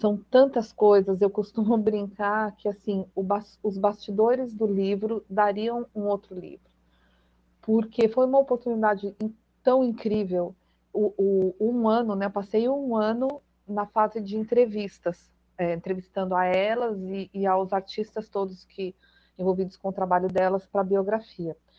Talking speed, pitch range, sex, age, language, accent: 150 wpm, 185-220 Hz, female, 40-59, Portuguese, Brazilian